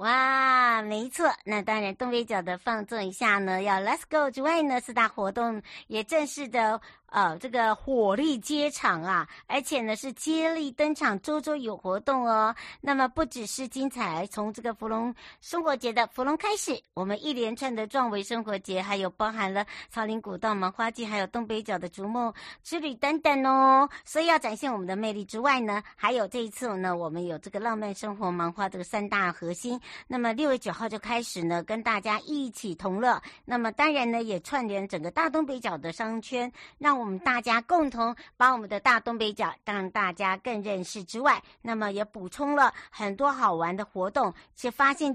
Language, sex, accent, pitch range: Chinese, male, American, 200-265 Hz